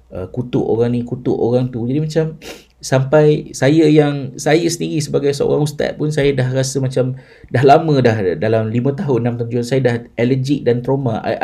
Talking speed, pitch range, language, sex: 190 wpm, 120-150 Hz, Malay, male